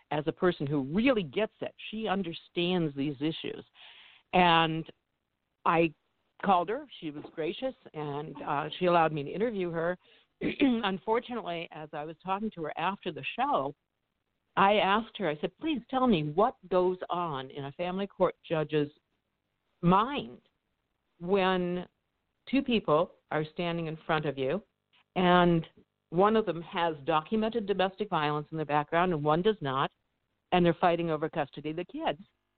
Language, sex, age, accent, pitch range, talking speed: English, female, 60-79, American, 165-225 Hz, 155 wpm